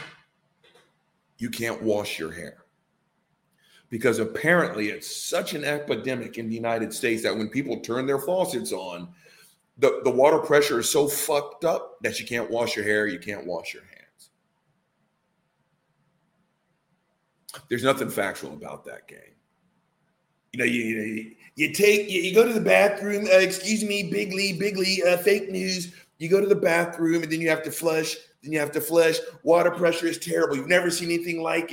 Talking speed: 170 wpm